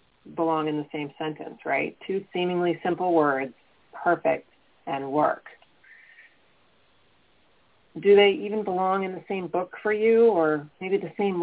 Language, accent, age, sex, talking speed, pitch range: English, American, 40-59, female, 140 wpm, 155-195 Hz